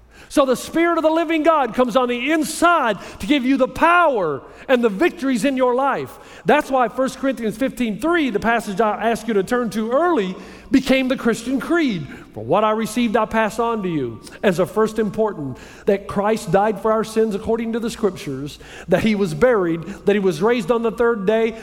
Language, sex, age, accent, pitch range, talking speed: English, male, 50-69, American, 205-270 Hz, 210 wpm